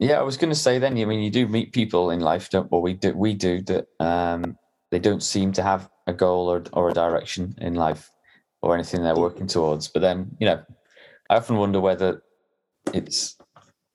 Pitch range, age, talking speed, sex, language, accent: 85-100 Hz, 20-39, 210 wpm, male, English, British